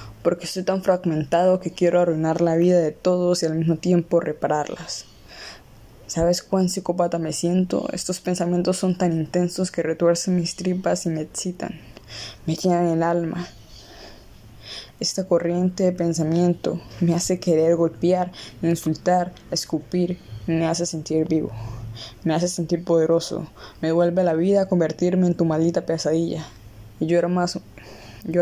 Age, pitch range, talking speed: 20-39, 155-175 Hz, 150 wpm